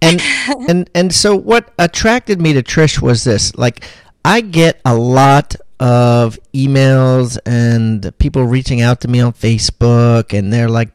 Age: 40-59